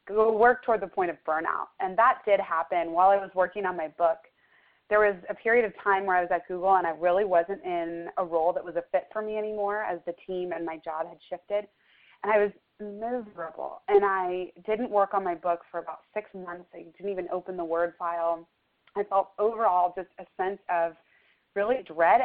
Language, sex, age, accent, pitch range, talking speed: English, female, 20-39, American, 175-215 Hz, 220 wpm